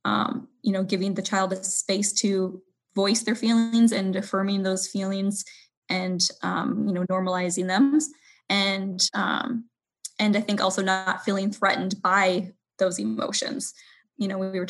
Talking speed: 155 wpm